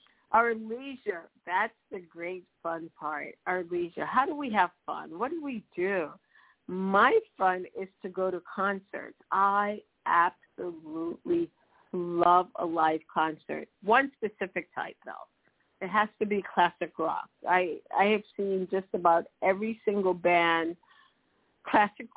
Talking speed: 140 wpm